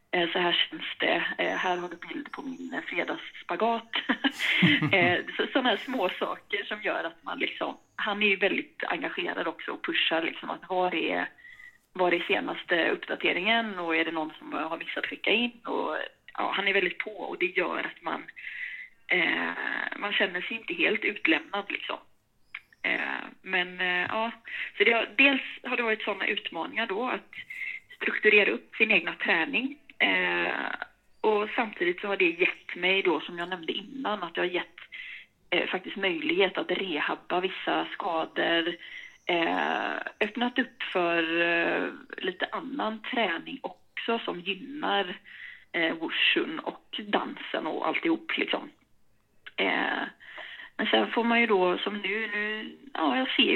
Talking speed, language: 155 wpm, Swedish